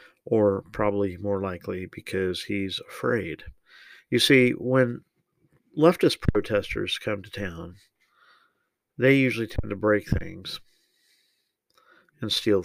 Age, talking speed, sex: 50-69, 110 wpm, male